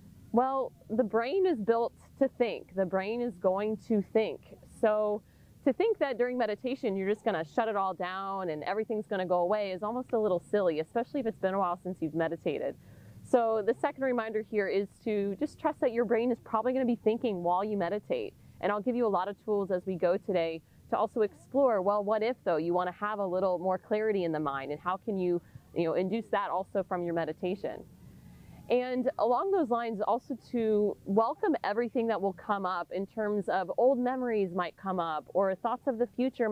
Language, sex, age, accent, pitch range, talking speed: English, female, 20-39, American, 185-235 Hz, 215 wpm